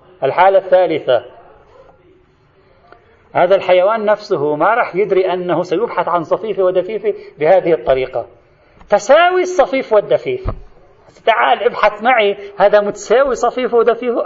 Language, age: Arabic, 40-59